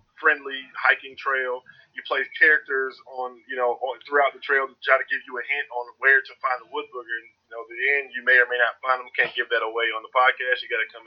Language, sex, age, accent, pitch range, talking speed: English, male, 20-39, American, 125-185 Hz, 270 wpm